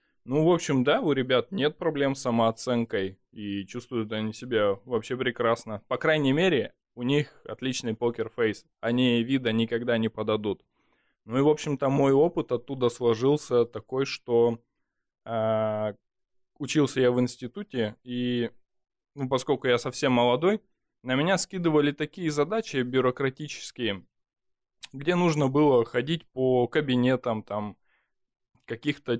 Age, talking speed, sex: 20-39, 130 wpm, male